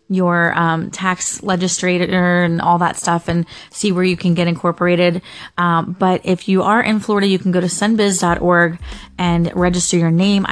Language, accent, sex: English, American, female